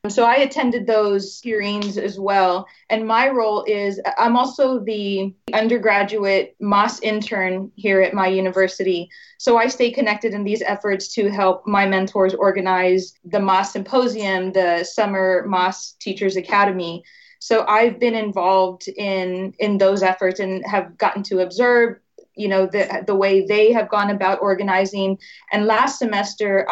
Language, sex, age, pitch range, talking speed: English, female, 20-39, 190-220 Hz, 150 wpm